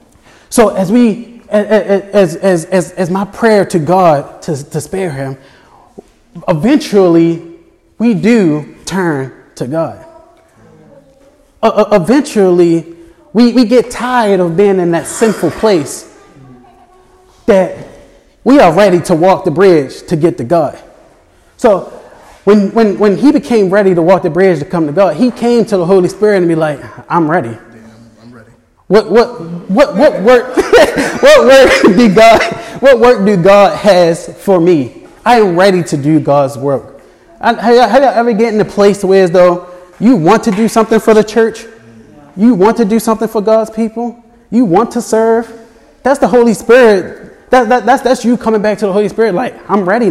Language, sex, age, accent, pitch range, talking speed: English, male, 20-39, American, 175-230 Hz, 160 wpm